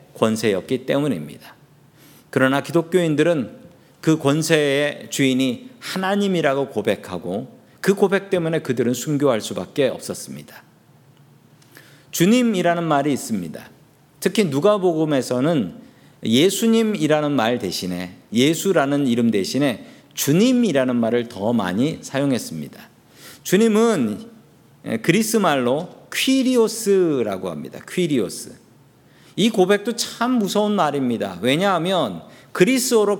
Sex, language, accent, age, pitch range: male, Korean, native, 50-69, 140-210 Hz